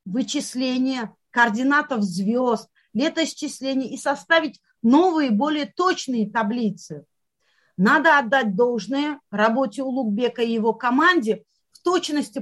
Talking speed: 95 wpm